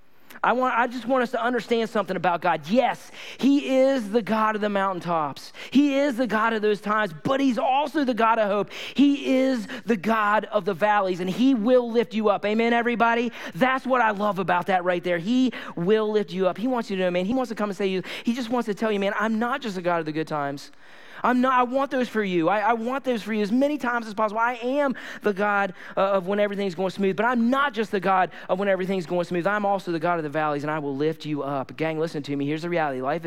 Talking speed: 270 wpm